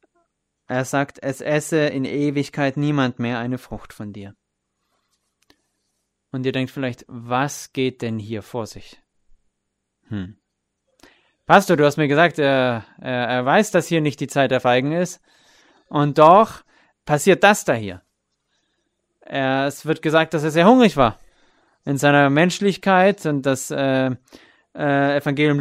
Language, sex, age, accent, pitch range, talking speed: English, male, 30-49, German, 130-165 Hz, 145 wpm